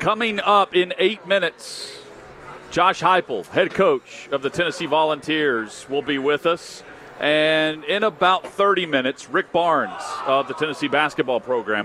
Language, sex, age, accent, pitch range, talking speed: English, male, 40-59, American, 135-170 Hz, 145 wpm